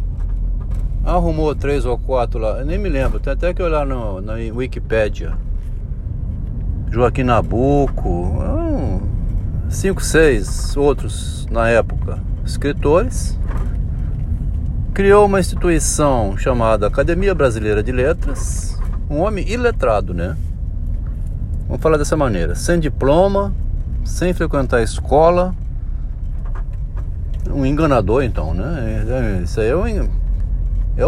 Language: Portuguese